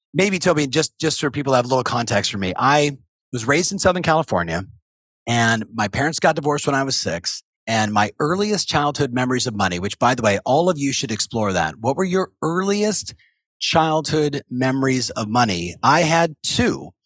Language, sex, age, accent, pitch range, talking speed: English, male, 40-59, American, 115-155 Hz, 195 wpm